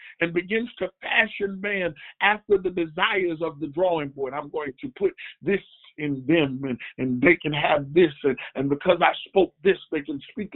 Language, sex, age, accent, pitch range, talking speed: English, male, 50-69, American, 160-210 Hz, 195 wpm